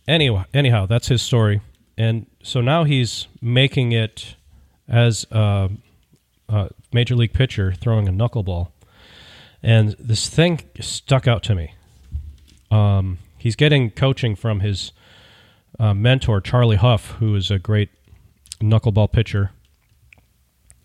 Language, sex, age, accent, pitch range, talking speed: English, male, 40-59, American, 100-125 Hz, 125 wpm